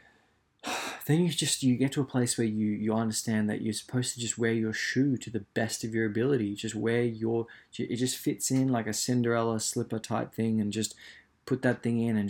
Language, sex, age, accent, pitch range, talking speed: English, male, 20-39, Australian, 110-125 Hz, 230 wpm